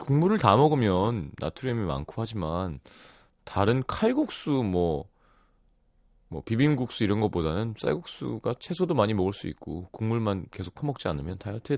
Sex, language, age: male, Korean, 30-49